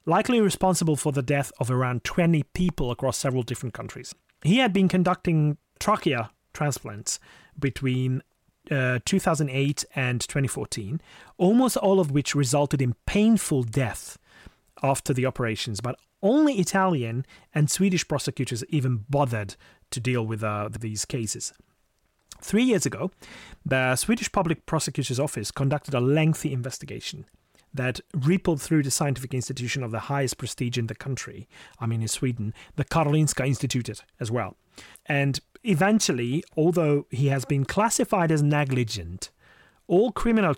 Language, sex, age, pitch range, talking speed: English, male, 30-49, 125-175 Hz, 140 wpm